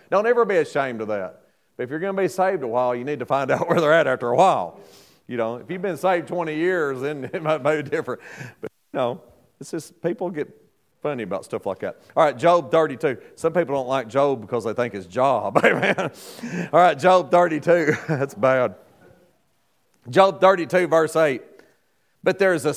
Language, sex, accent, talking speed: English, male, American, 210 wpm